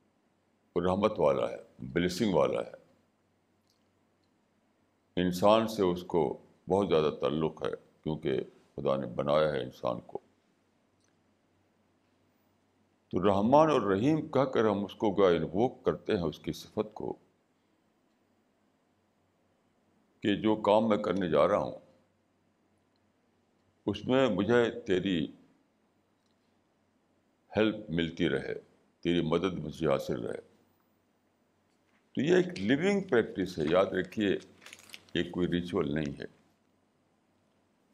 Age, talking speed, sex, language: 60-79, 110 wpm, male, Urdu